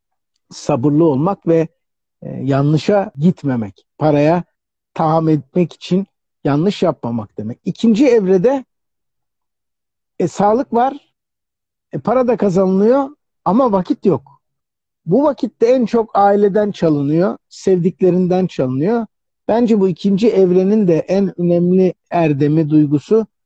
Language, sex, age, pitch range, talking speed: Turkish, male, 60-79, 150-190 Hz, 105 wpm